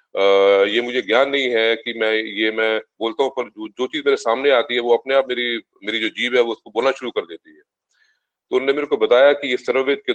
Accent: native